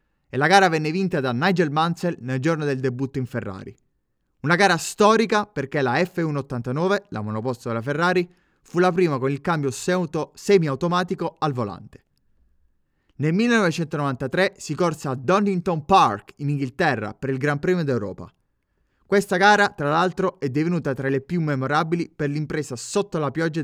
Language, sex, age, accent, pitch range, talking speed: Italian, male, 20-39, native, 135-180 Hz, 165 wpm